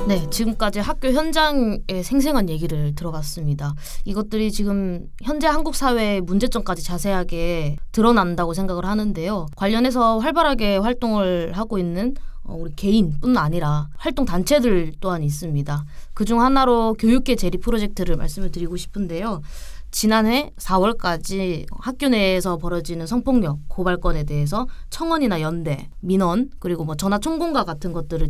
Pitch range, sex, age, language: 170-235 Hz, female, 20-39, Korean